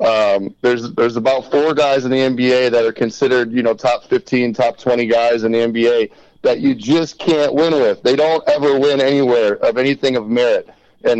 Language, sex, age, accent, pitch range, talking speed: English, male, 30-49, American, 110-130 Hz, 205 wpm